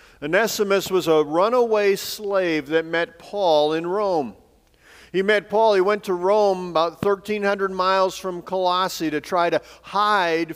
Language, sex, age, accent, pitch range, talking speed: English, male, 50-69, American, 130-165 Hz, 150 wpm